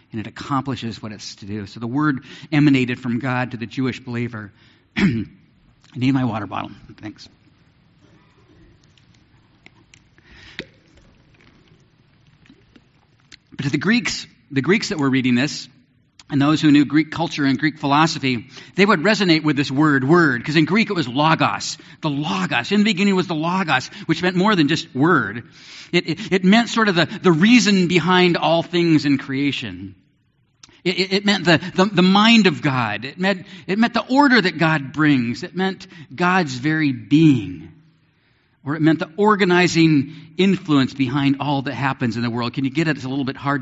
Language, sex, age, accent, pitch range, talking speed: English, male, 50-69, American, 125-165 Hz, 175 wpm